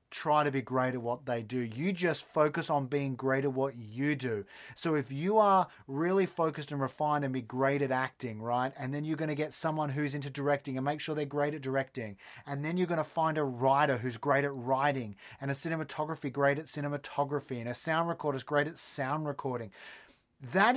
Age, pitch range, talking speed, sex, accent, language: 30-49, 130-160 Hz, 225 wpm, male, Australian, English